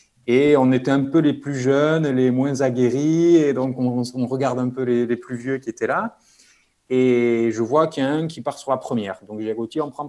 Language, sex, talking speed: French, male, 270 wpm